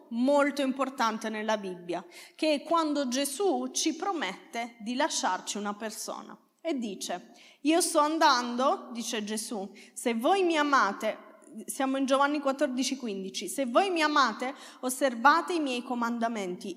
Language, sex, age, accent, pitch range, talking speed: Italian, female, 30-49, native, 230-315 Hz, 130 wpm